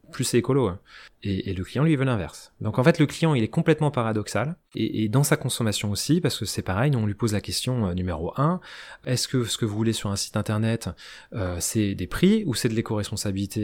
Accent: French